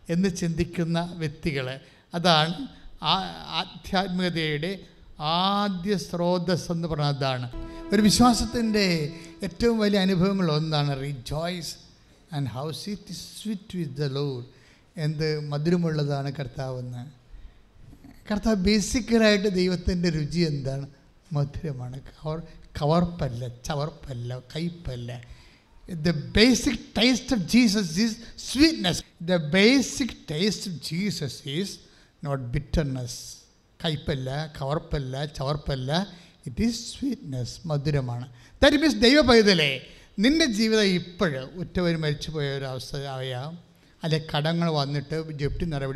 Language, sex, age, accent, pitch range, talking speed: English, male, 60-79, Indian, 140-185 Hz, 65 wpm